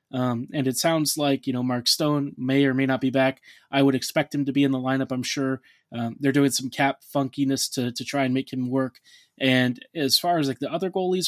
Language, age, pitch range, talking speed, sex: English, 20-39, 135-160 Hz, 250 wpm, male